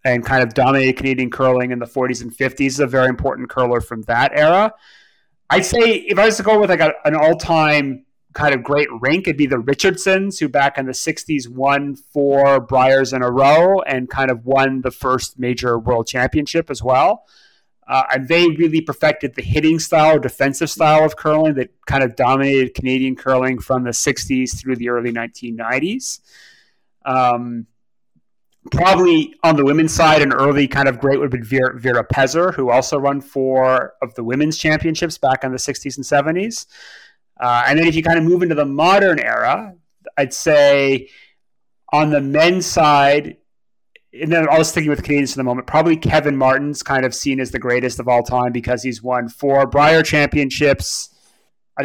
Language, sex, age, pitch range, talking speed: English, male, 30-49, 130-155 Hz, 185 wpm